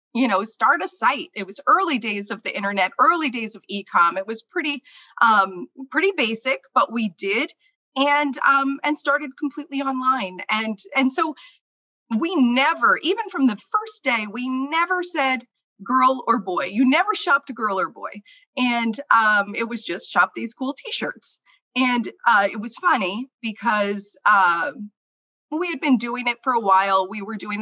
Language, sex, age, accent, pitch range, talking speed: English, female, 30-49, American, 215-280 Hz, 175 wpm